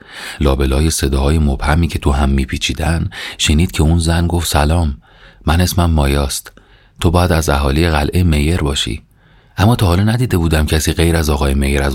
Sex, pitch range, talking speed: male, 75-95 Hz, 175 wpm